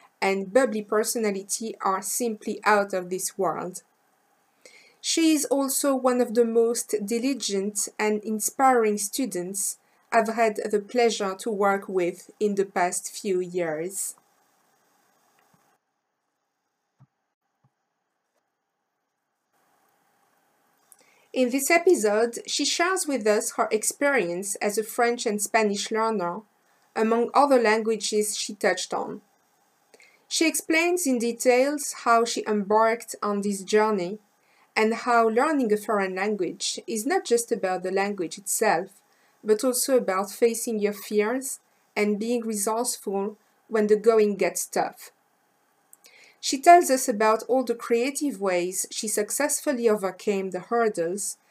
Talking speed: 120 wpm